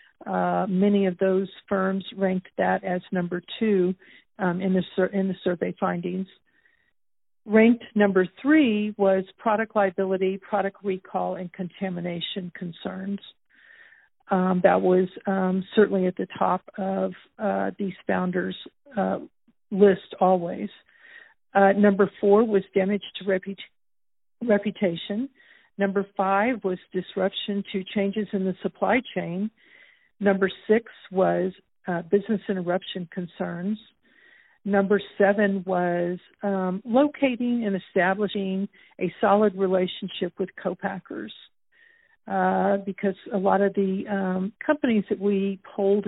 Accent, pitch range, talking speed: American, 185-210 Hz, 115 wpm